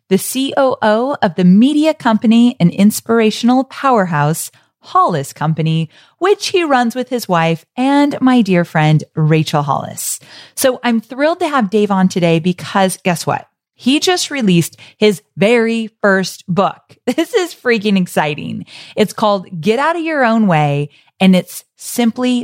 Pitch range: 180-240 Hz